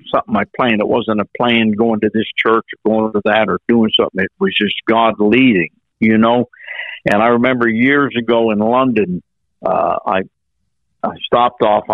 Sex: male